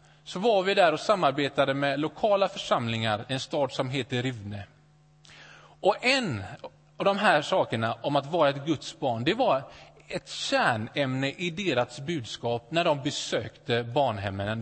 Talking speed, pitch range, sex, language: 150 wpm, 135-170 Hz, male, Swedish